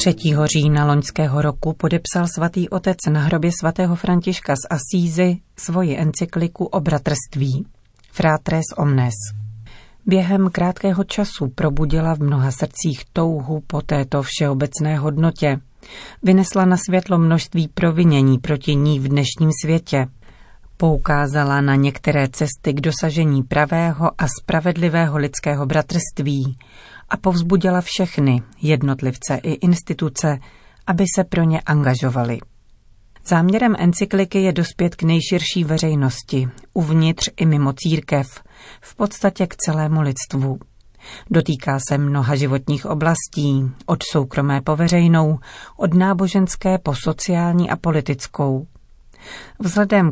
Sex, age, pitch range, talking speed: female, 40-59, 140-175 Hz, 115 wpm